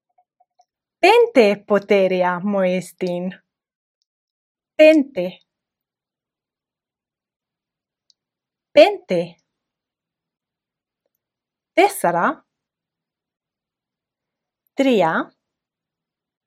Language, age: Greek, 30-49